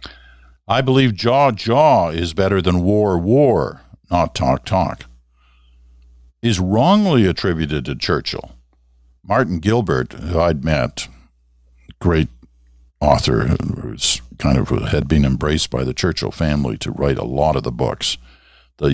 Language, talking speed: English, 135 wpm